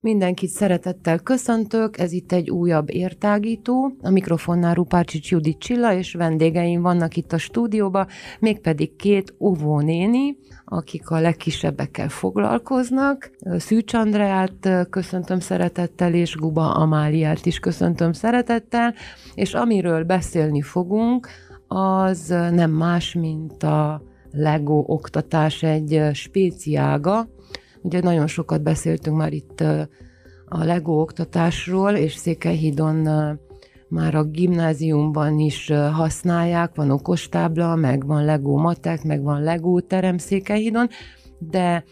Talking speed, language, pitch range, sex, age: 110 wpm, Hungarian, 150-185 Hz, female, 30-49